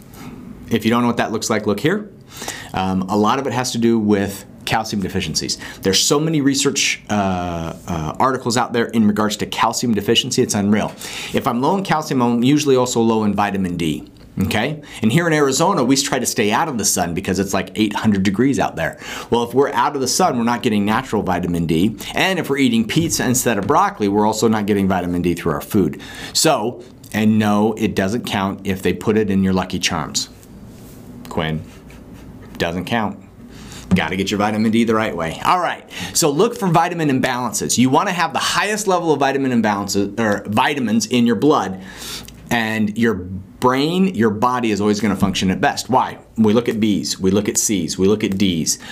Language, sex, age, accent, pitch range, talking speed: English, male, 40-59, American, 100-130 Hz, 210 wpm